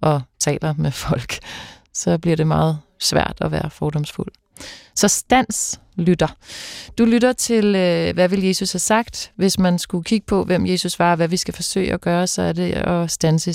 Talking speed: 195 wpm